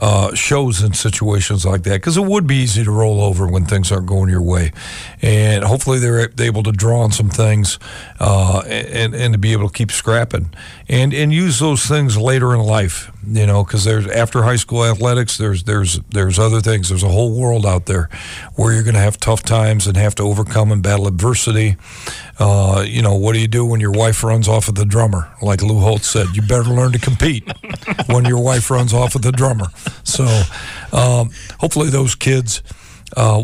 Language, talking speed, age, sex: English, 210 wpm, 50-69, male